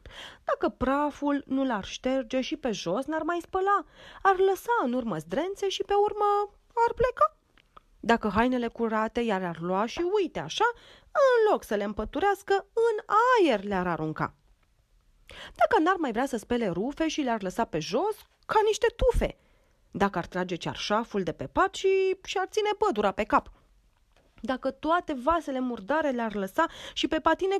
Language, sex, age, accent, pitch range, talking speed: Romanian, female, 30-49, native, 235-395 Hz, 165 wpm